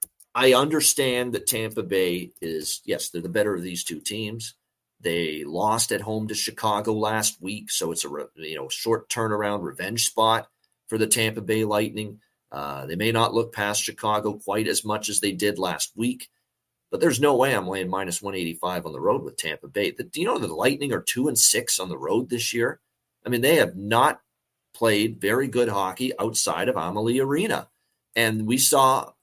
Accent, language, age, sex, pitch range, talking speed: American, English, 30-49, male, 105-125 Hz, 190 wpm